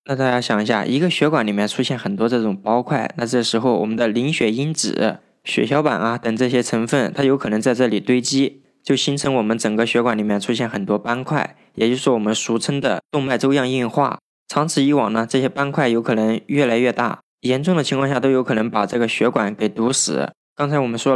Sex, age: male, 20-39